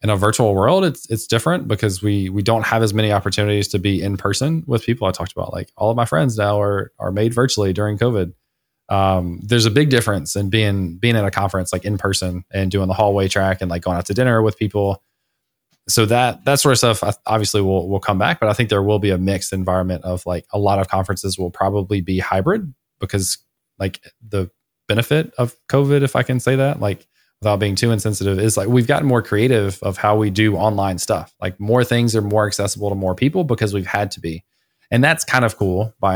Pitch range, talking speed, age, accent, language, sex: 95-115 Hz, 235 wpm, 20-39, American, English, male